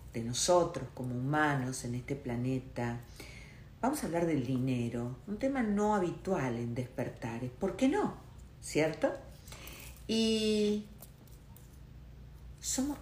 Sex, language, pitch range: female, Spanish, 130-190 Hz